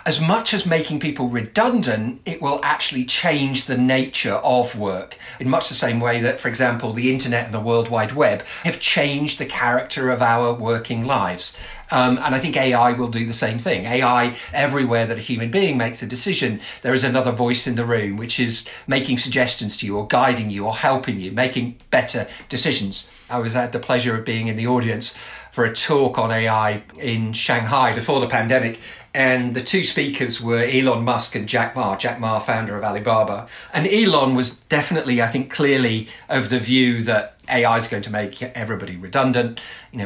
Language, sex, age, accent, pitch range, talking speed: English, male, 50-69, British, 110-130 Hz, 200 wpm